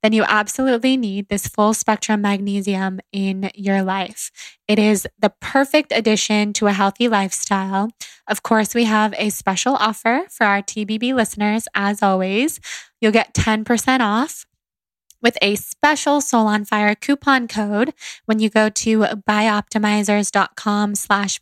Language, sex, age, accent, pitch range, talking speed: English, female, 10-29, American, 200-225 Hz, 145 wpm